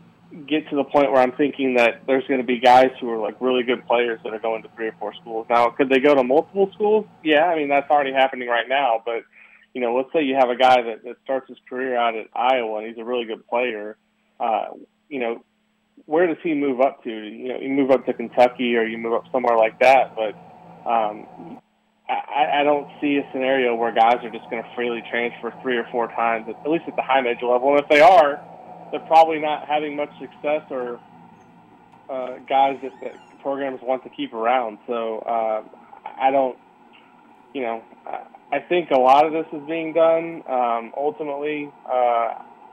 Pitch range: 120-140 Hz